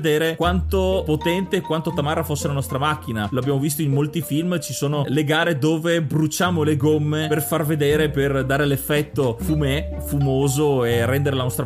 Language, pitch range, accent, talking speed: Italian, 135-160 Hz, native, 175 wpm